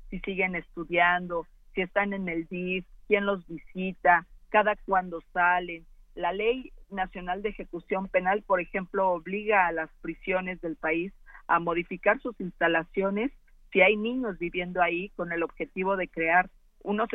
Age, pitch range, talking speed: 40-59, 170-195 Hz, 150 wpm